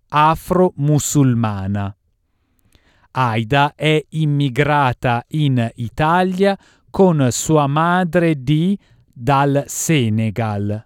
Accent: native